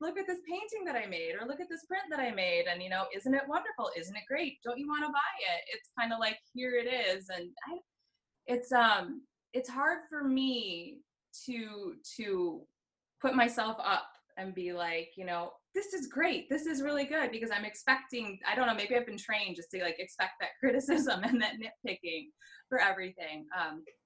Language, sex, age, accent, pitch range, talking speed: English, female, 20-39, American, 185-285 Hz, 210 wpm